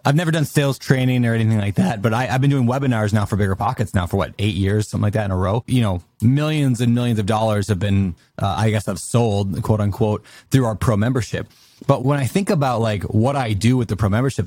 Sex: male